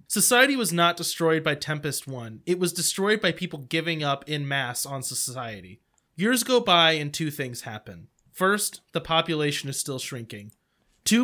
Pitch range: 140-185 Hz